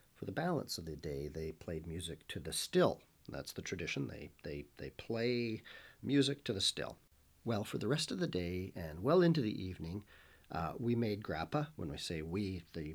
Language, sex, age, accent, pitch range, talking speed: English, male, 40-59, American, 90-130 Hz, 205 wpm